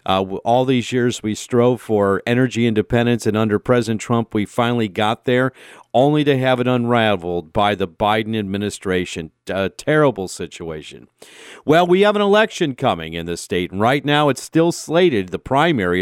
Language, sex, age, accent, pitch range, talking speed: English, male, 50-69, American, 100-130 Hz, 170 wpm